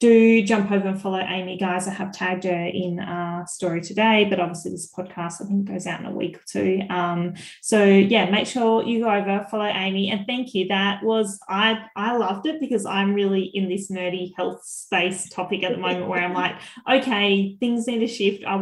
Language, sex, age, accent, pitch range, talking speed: English, female, 20-39, Australian, 185-220 Hz, 220 wpm